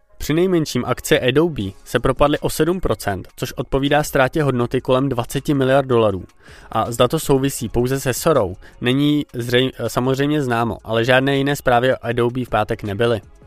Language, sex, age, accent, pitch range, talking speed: Czech, male, 20-39, native, 120-145 Hz, 160 wpm